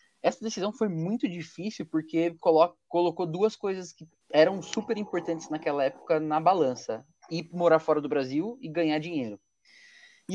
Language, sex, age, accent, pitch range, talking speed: Portuguese, male, 20-39, Brazilian, 155-220 Hz, 150 wpm